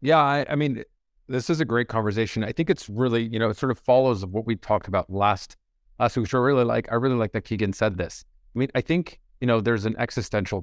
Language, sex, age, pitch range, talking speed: English, male, 30-49, 95-115 Hz, 265 wpm